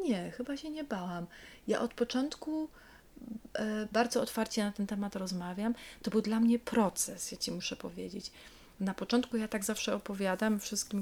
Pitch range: 180-220 Hz